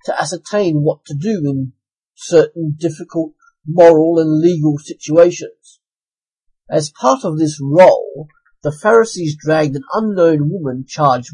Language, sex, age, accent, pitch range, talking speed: English, male, 50-69, British, 135-180 Hz, 125 wpm